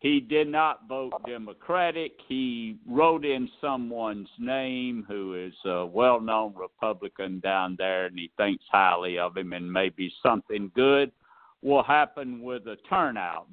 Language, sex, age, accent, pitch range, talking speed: English, male, 60-79, American, 95-125 Hz, 145 wpm